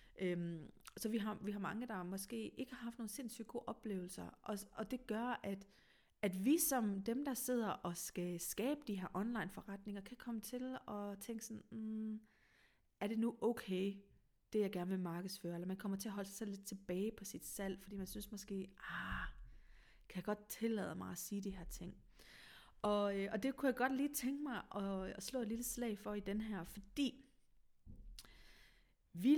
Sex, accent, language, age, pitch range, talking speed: female, native, Danish, 30-49, 190-225 Hz, 195 wpm